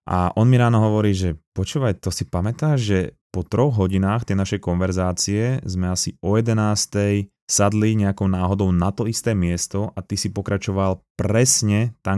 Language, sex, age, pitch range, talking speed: Slovak, male, 20-39, 95-115 Hz, 170 wpm